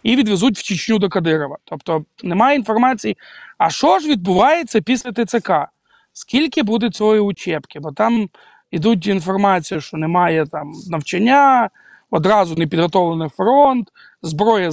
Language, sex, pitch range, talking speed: Ukrainian, male, 175-255 Hz, 130 wpm